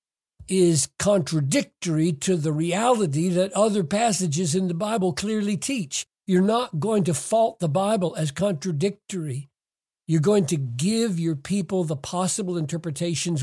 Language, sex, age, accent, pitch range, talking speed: English, male, 60-79, American, 140-190 Hz, 140 wpm